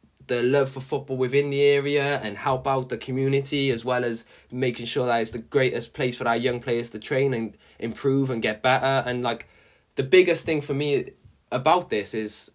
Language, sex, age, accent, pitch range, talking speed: English, male, 10-29, British, 110-135 Hz, 205 wpm